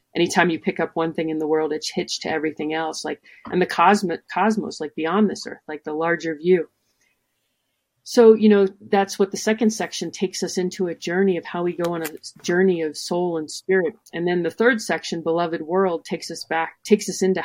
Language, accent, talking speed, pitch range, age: English, American, 220 wpm, 165-200 Hz, 40-59